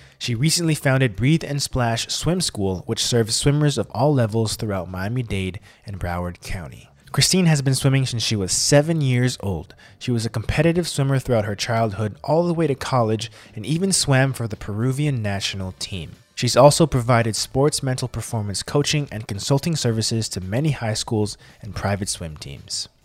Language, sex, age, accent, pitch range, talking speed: English, male, 20-39, American, 105-140 Hz, 175 wpm